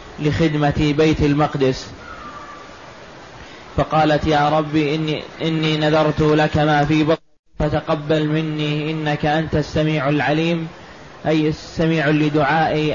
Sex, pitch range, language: male, 150-160 Hz, Arabic